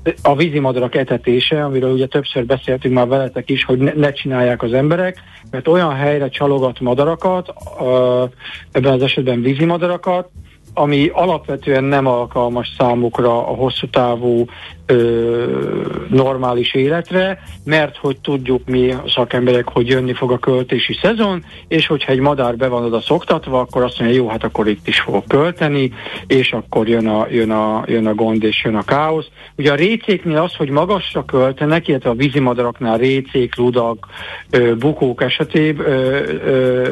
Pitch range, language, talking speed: 120-145 Hz, Hungarian, 155 wpm